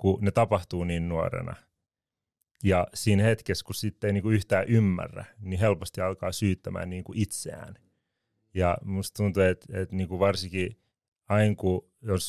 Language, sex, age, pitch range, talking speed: Finnish, male, 30-49, 90-105 Hz, 140 wpm